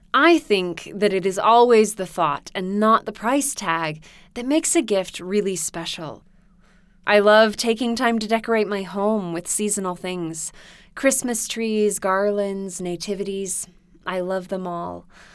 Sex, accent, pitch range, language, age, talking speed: female, American, 185-220 Hz, English, 20-39, 150 wpm